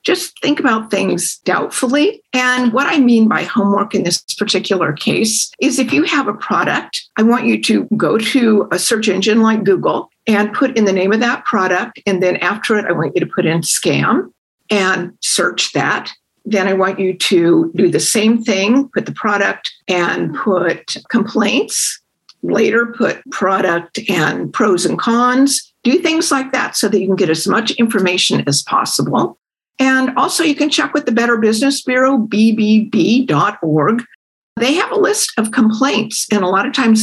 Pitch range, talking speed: 205-265 Hz, 180 wpm